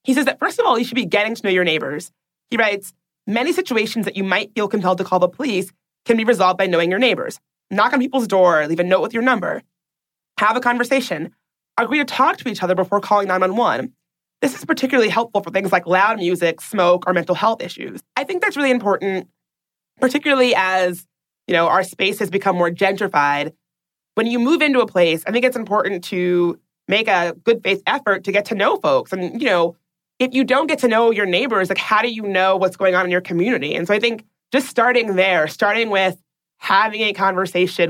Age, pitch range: 30-49, 175-225 Hz